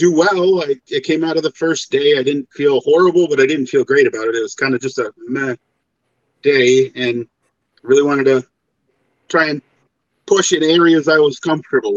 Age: 40-59